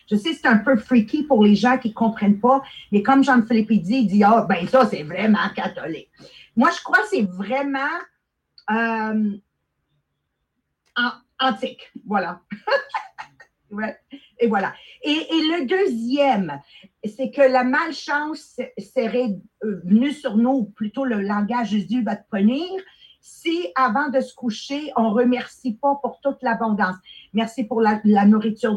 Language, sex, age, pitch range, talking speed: English, female, 50-69, 210-260 Hz, 165 wpm